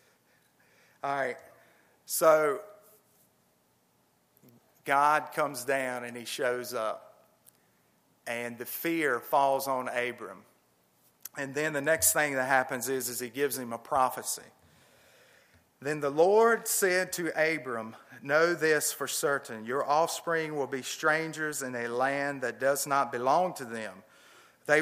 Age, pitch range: 40-59, 130-165 Hz